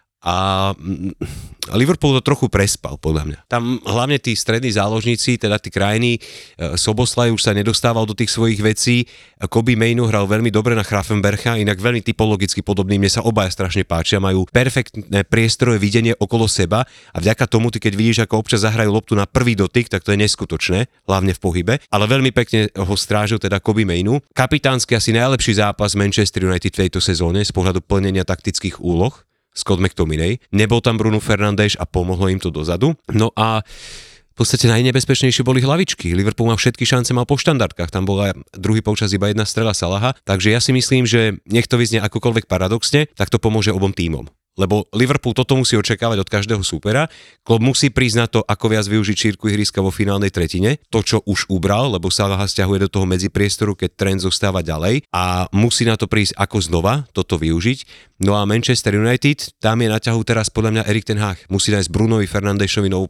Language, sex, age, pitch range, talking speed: Slovak, male, 30-49, 95-115 Hz, 190 wpm